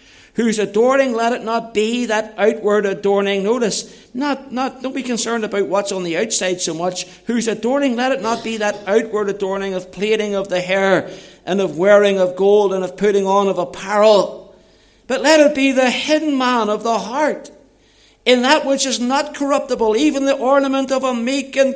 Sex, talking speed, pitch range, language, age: male, 195 wpm, 205-260 Hz, English, 60-79